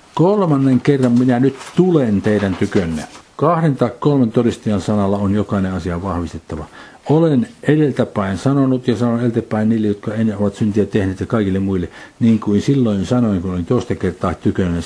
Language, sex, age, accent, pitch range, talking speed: Finnish, male, 60-79, native, 95-125 Hz, 160 wpm